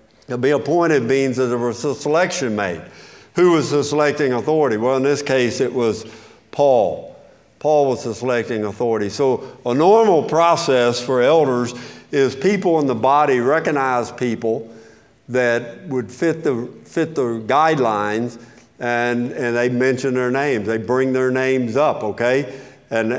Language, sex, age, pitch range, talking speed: English, male, 50-69, 120-145 Hz, 155 wpm